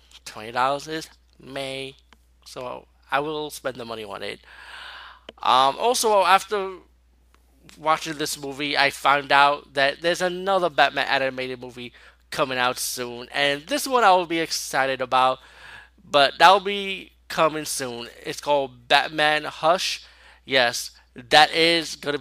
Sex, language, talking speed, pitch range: male, English, 140 wpm, 130-170 Hz